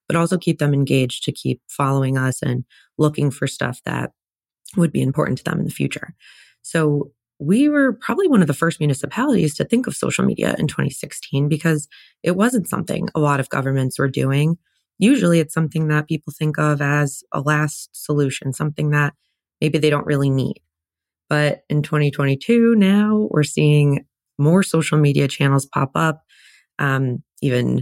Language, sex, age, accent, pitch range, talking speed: English, female, 20-39, American, 140-170 Hz, 175 wpm